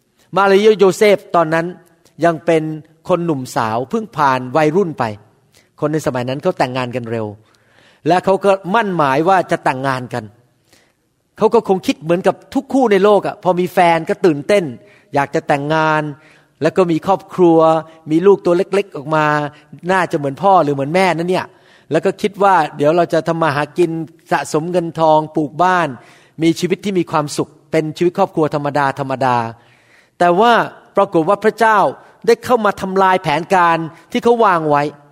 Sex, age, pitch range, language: male, 30-49, 150-200 Hz, Thai